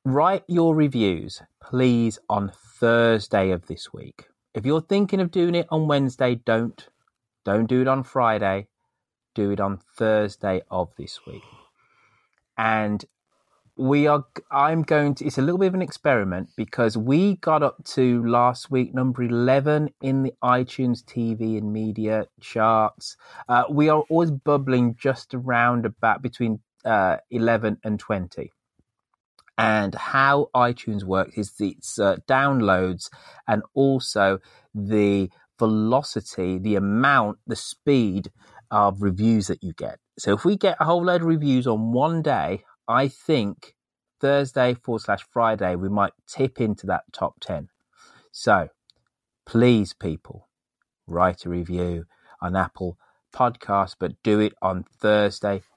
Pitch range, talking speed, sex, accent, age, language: 105-135 Hz, 145 wpm, male, British, 30-49, English